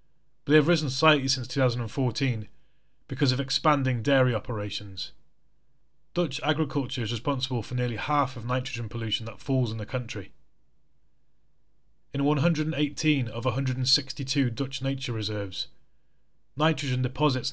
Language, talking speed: English, 120 wpm